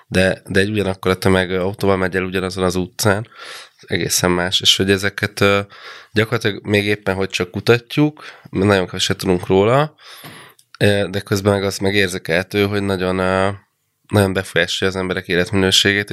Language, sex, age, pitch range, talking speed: Hungarian, male, 20-39, 95-110 Hz, 160 wpm